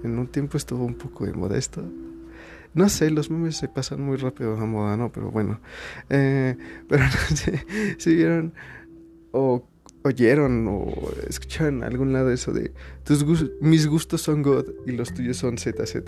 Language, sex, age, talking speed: Spanish, male, 20-39, 170 wpm